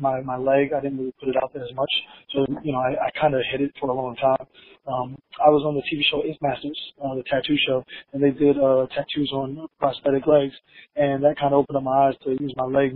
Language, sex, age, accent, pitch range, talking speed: English, male, 20-39, American, 140-155 Hz, 265 wpm